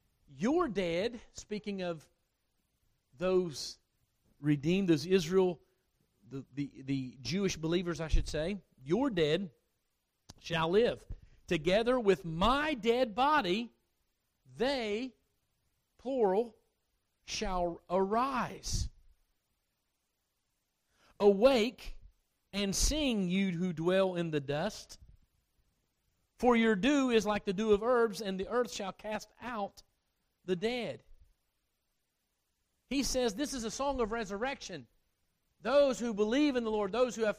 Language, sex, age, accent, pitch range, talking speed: English, male, 50-69, American, 160-245 Hz, 115 wpm